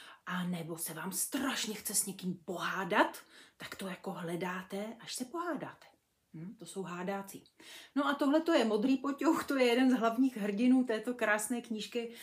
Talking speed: 165 wpm